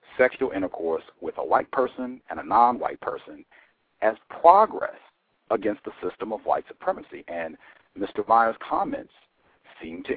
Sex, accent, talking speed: male, American, 140 wpm